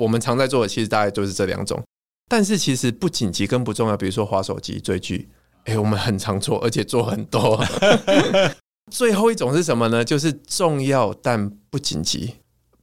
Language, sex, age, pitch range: Chinese, male, 20-39, 105-130 Hz